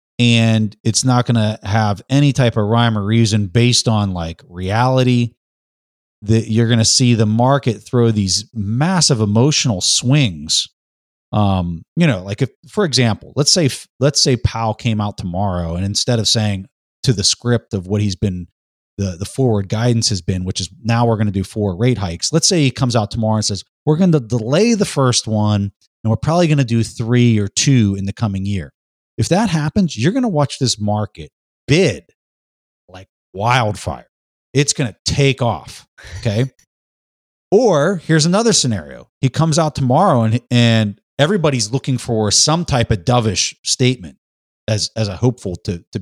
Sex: male